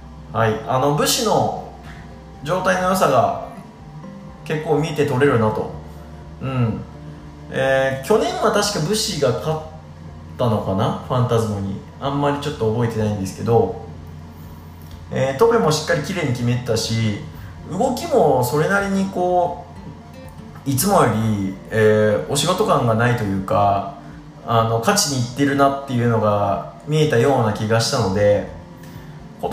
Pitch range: 105-155 Hz